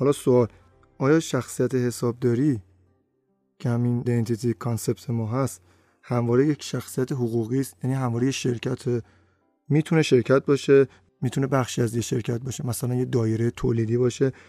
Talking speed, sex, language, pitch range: 135 wpm, male, Persian, 115-135 Hz